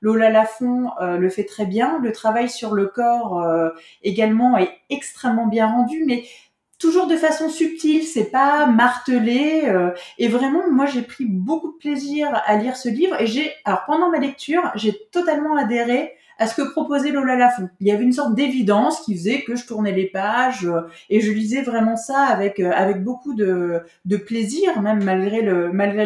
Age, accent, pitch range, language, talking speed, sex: 20-39, French, 215-285 Hz, French, 195 wpm, female